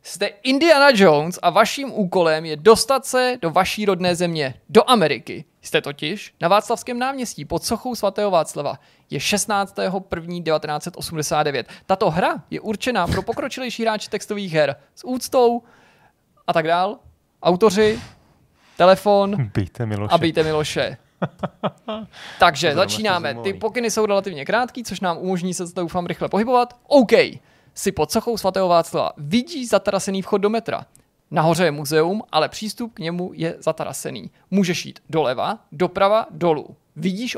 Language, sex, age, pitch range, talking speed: Czech, male, 20-39, 160-215 Hz, 140 wpm